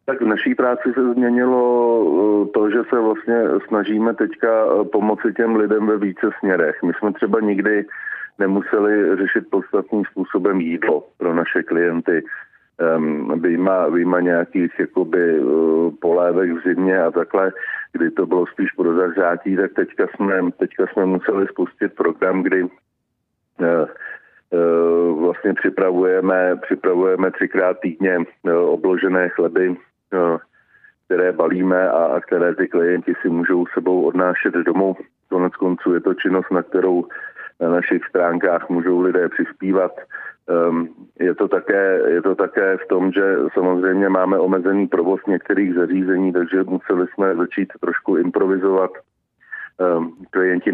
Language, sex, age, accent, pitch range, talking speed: Czech, male, 40-59, native, 90-95 Hz, 125 wpm